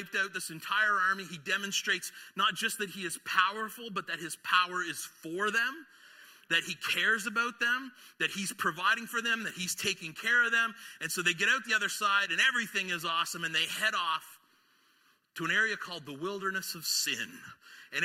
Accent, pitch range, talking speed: American, 165-265 Hz, 200 wpm